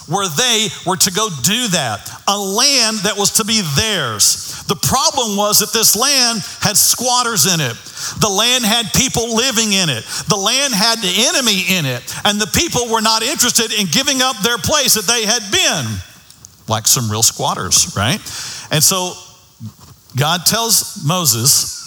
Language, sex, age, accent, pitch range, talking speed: English, male, 50-69, American, 155-230 Hz, 175 wpm